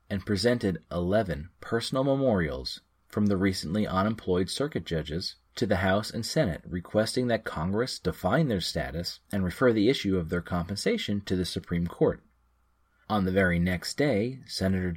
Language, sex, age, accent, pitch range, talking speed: English, male, 30-49, American, 85-110 Hz, 155 wpm